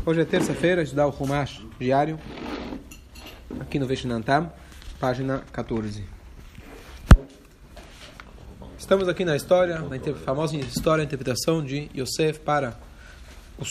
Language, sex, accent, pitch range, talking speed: Portuguese, male, Brazilian, 120-150 Hz, 110 wpm